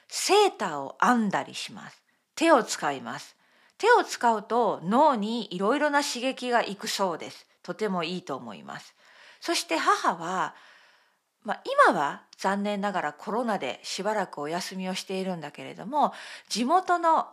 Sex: female